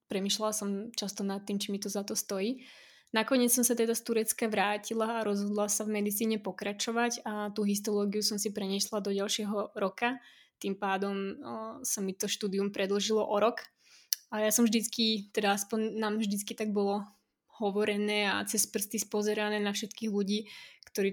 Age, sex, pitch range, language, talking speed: 20-39, female, 200-220 Hz, Slovak, 175 wpm